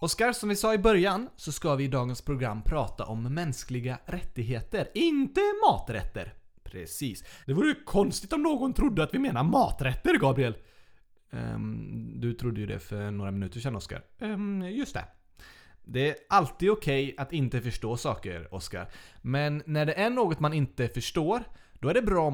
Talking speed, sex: 180 wpm, male